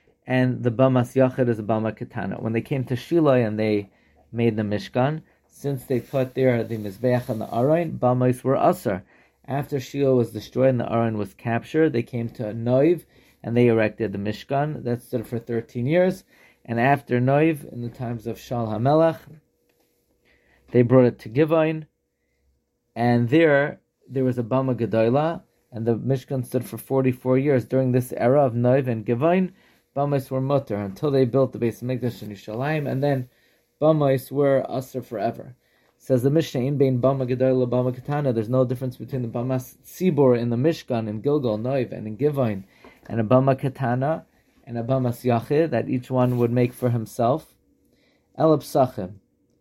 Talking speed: 170 wpm